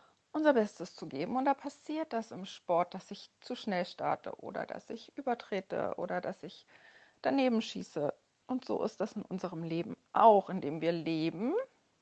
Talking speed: 175 wpm